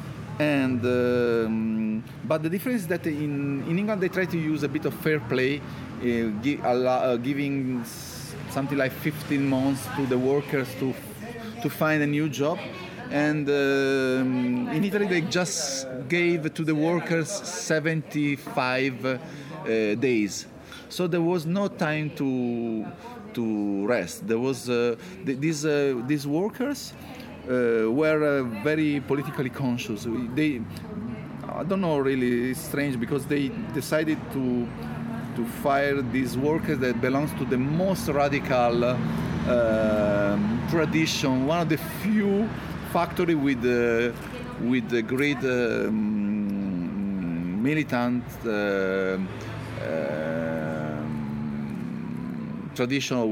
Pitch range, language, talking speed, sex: 120-155 Hz, Greek, 125 wpm, male